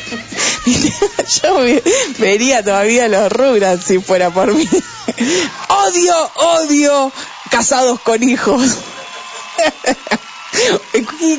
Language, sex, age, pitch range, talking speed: Spanish, female, 20-39, 175-245 Hz, 85 wpm